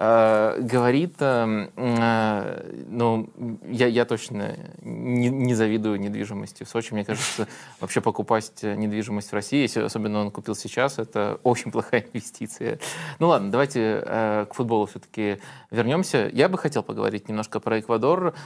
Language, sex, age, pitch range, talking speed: Russian, male, 20-39, 110-135 Hz, 130 wpm